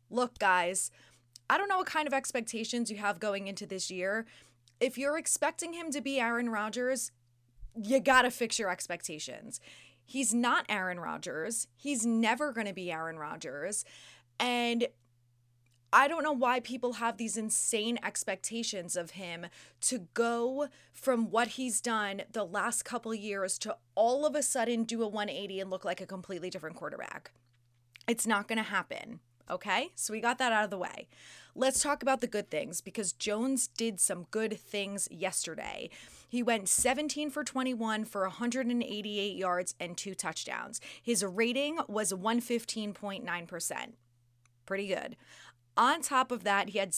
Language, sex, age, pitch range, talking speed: English, female, 20-39, 185-240 Hz, 165 wpm